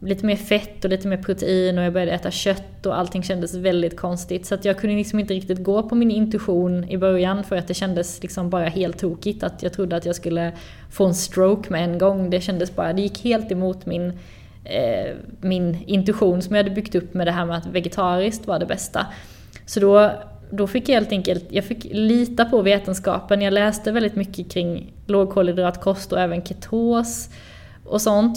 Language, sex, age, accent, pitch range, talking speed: Swedish, female, 20-39, native, 180-205 Hz, 205 wpm